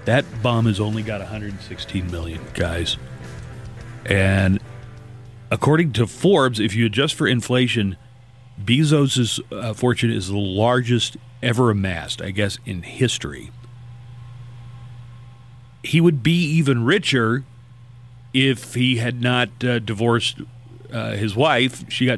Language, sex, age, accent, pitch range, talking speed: English, male, 40-59, American, 110-125 Hz, 120 wpm